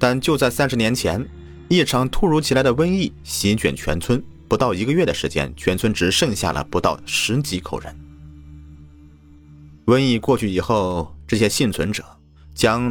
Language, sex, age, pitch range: Chinese, male, 30-49, 75-115 Hz